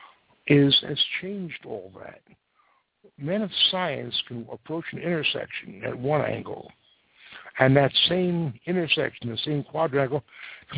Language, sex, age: English, male, 60-79